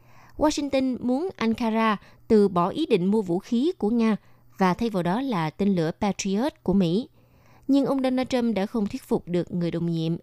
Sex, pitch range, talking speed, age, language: female, 170-225 Hz, 200 wpm, 20-39, Vietnamese